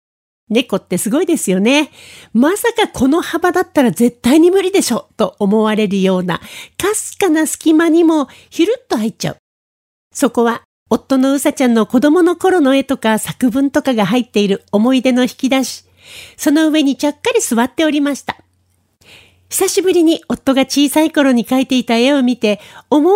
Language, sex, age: Japanese, female, 40-59